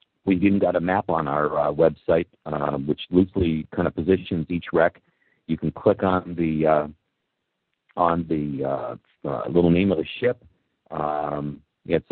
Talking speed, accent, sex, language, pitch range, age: 160 wpm, American, male, English, 80-95 Hz, 50-69